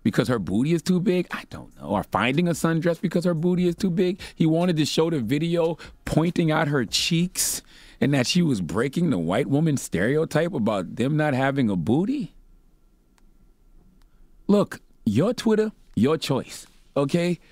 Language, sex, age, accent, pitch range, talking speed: English, male, 30-49, American, 130-190 Hz, 170 wpm